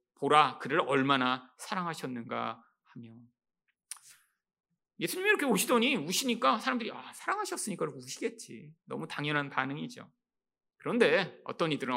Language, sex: Korean, male